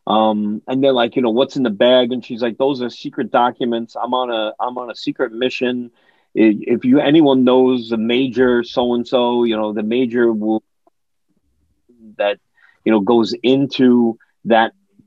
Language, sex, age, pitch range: English, male, 40-59, 105-125 Hz